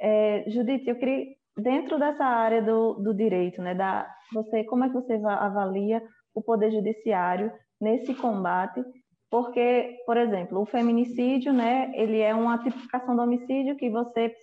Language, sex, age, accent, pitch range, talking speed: Portuguese, female, 20-39, Brazilian, 220-250 Hz, 155 wpm